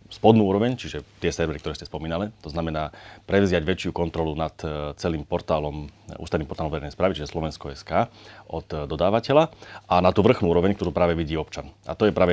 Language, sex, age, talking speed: Slovak, male, 30-49, 185 wpm